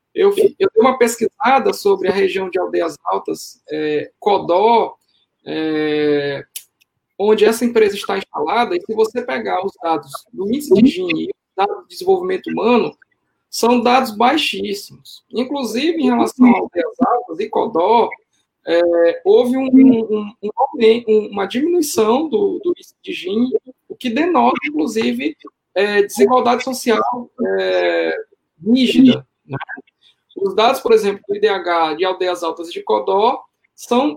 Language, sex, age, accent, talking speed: Portuguese, male, 20-39, Brazilian, 130 wpm